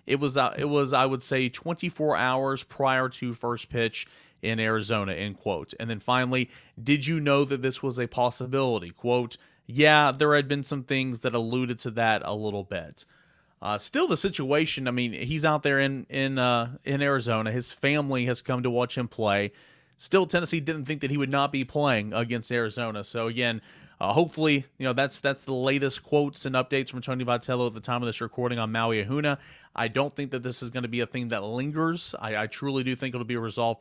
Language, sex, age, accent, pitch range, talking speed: English, male, 30-49, American, 120-140 Hz, 220 wpm